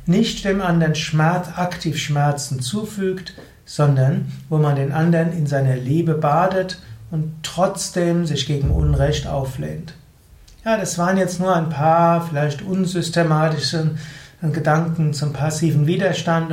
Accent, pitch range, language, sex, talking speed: German, 145-180 Hz, German, male, 125 wpm